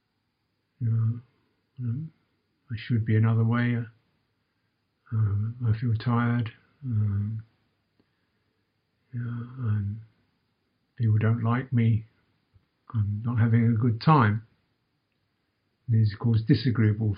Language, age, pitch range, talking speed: English, 60-79, 110-130 Hz, 90 wpm